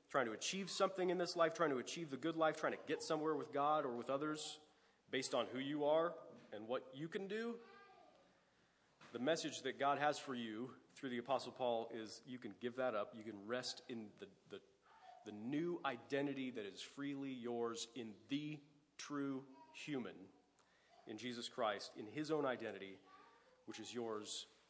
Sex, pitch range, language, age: male, 120-165 Hz, English, 30-49